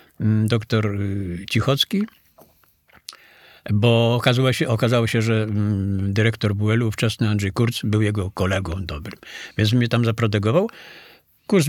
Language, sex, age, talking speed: Polish, male, 50-69, 115 wpm